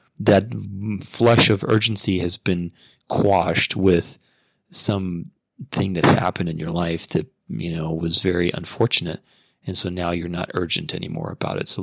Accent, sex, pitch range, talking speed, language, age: American, male, 90-115 Hz, 150 wpm, English, 30-49